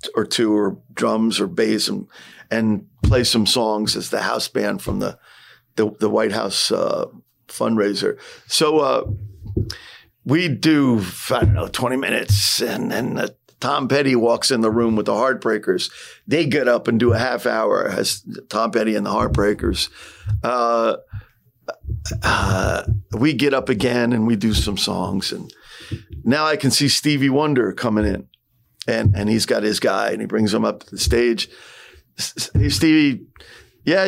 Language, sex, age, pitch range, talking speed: English, male, 50-69, 110-135 Hz, 165 wpm